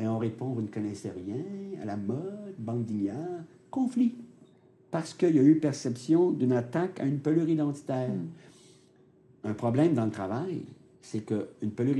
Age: 60-79